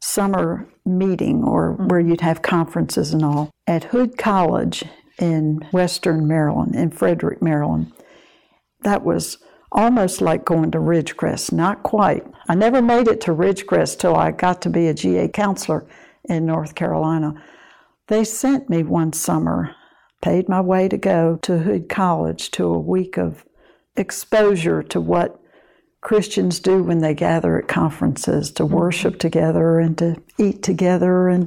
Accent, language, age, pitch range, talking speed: American, English, 60-79, 160-195 Hz, 150 wpm